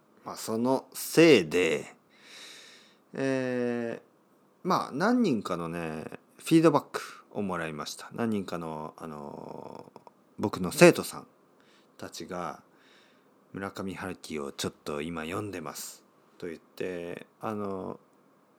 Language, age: Japanese, 40-59